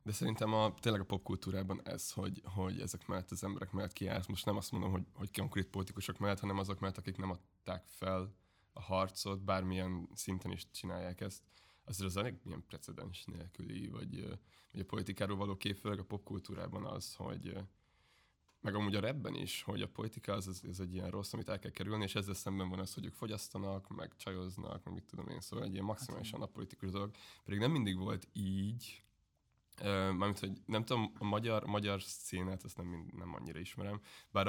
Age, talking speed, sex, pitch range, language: 20-39, 195 wpm, male, 95-105 Hz, Hungarian